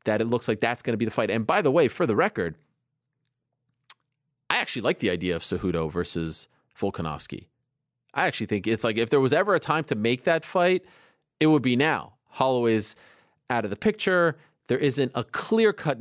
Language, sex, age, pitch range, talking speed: English, male, 30-49, 100-135 Hz, 200 wpm